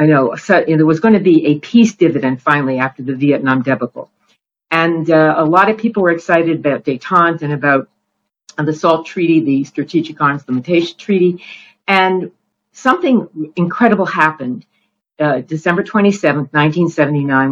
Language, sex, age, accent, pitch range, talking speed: English, female, 50-69, American, 145-185 Hz, 160 wpm